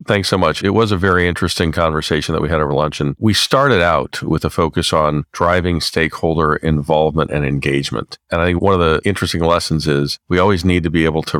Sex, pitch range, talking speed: male, 80-90 Hz, 225 wpm